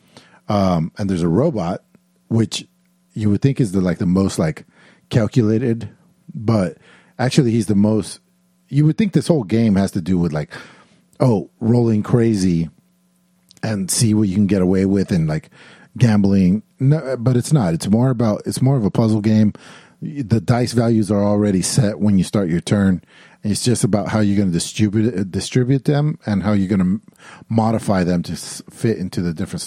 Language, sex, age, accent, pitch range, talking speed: English, male, 40-59, American, 90-125 Hz, 195 wpm